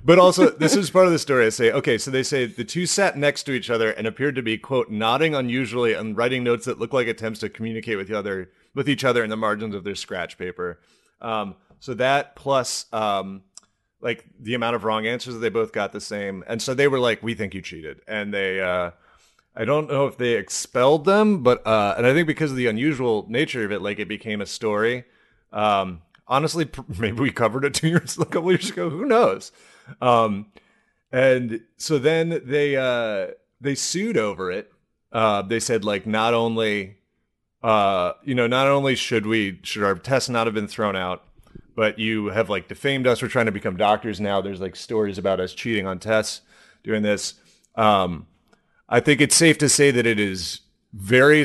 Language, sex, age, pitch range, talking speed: English, male, 30-49, 105-140 Hz, 210 wpm